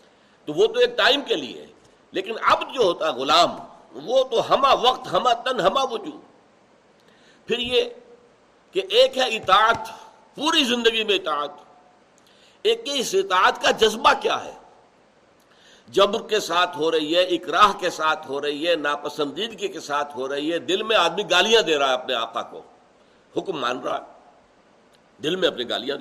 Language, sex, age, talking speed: Urdu, male, 60-79, 160 wpm